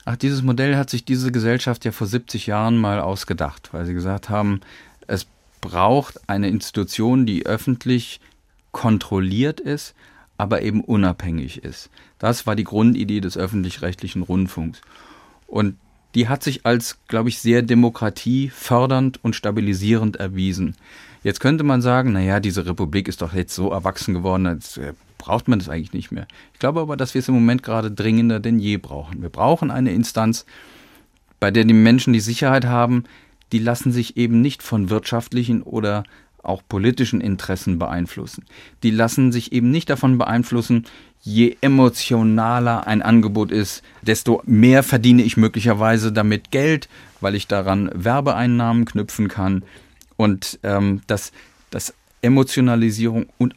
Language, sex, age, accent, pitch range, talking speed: German, male, 40-59, German, 100-125 Hz, 150 wpm